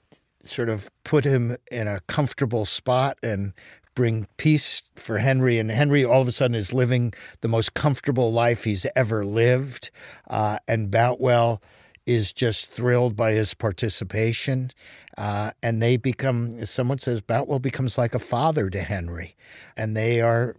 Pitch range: 110-130 Hz